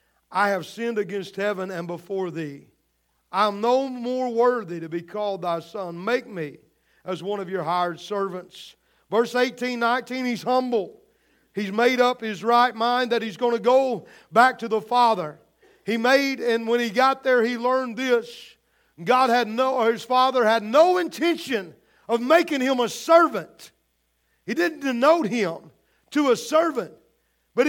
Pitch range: 215-255 Hz